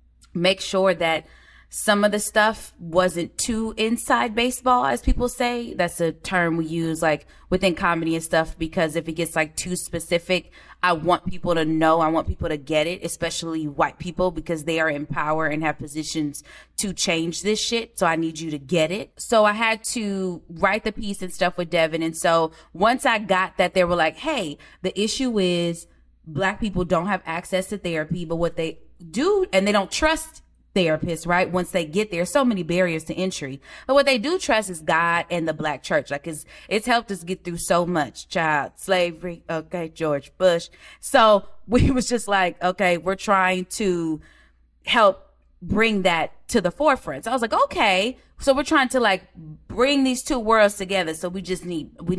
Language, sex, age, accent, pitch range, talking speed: English, female, 20-39, American, 165-205 Hz, 200 wpm